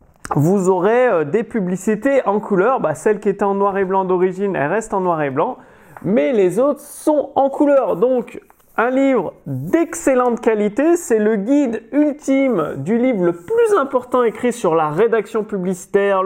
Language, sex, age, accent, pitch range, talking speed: French, male, 30-49, French, 185-260 Hz, 170 wpm